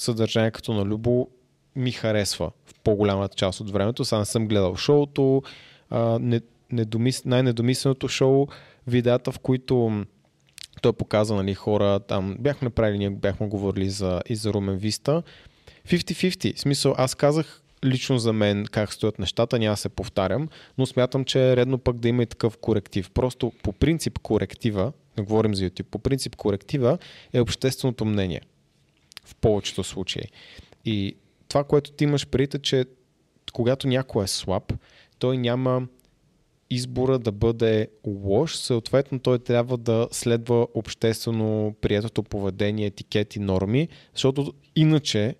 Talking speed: 145 wpm